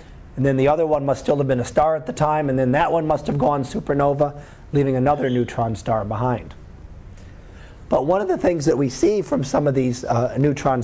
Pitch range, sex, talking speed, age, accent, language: 115-150 Hz, male, 225 wpm, 40-59, American, English